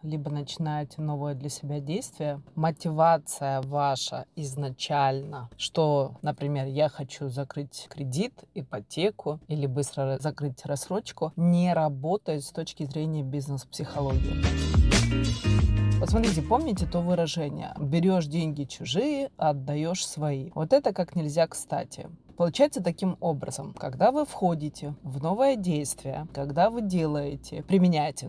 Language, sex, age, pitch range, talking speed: Russian, female, 30-49, 140-170 Hz, 110 wpm